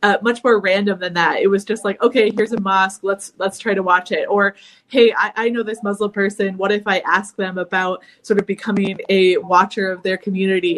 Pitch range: 190-210 Hz